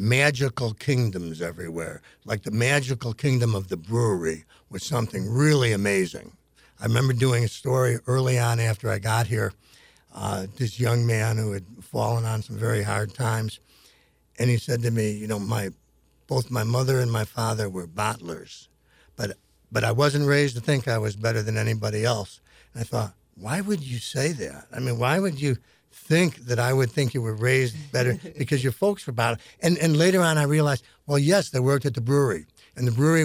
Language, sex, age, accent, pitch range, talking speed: English, male, 60-79, American, 110-135 Hz, 195 wpm